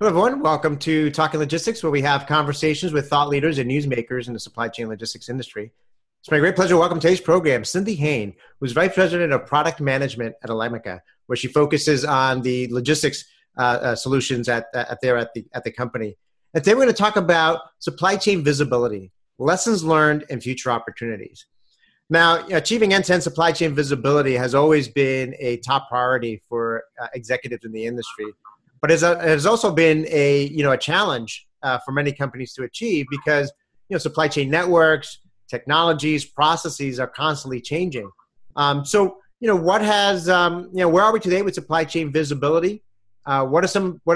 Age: 40-59